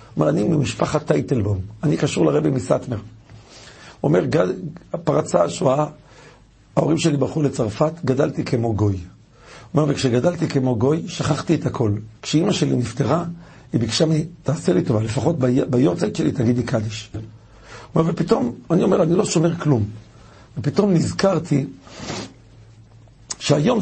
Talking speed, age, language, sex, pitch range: 135 wpm, 50-69, Hebrew, male, 115-165 Hz